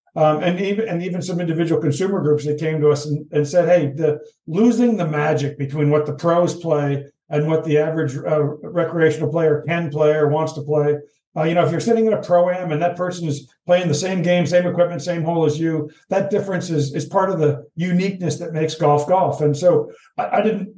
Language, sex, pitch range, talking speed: English, male, 150-175 Hz, 230 wpm